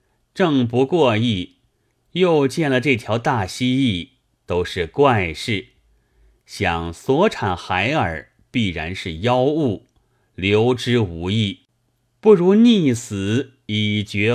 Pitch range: 95-135 Hz